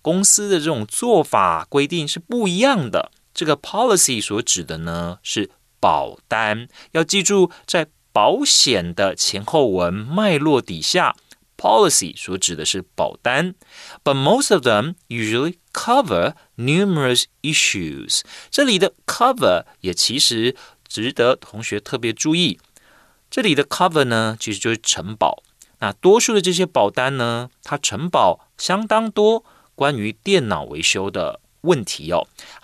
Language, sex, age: Chinese, male, 30-49